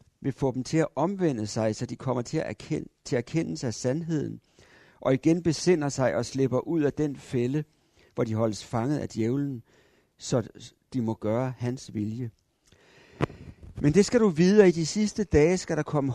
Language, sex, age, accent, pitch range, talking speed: Danish, male, 60-79, native, 115-155 Hz, 190 wpm